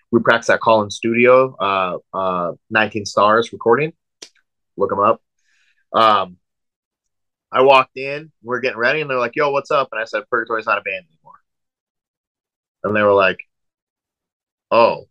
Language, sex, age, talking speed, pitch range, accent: English, male, 30-49, 160 wpm, 100-120 Hz, American